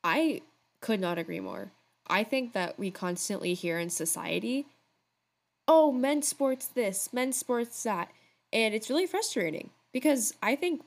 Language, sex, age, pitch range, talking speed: English, female, 10-29, 175-215 Hz, 150 wpm